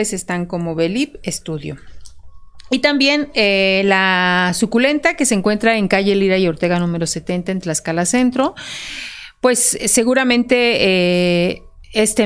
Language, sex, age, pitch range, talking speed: Spanish, female, 40-59, 175-230 Hz, 125 wpm